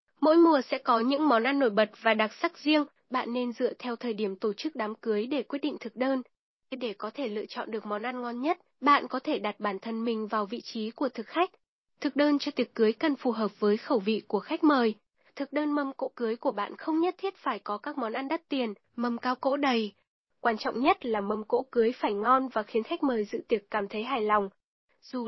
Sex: female